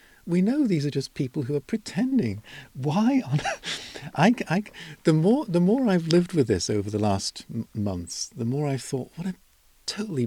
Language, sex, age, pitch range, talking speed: English, male, 50-69, 105-150 Hz, 195 wpm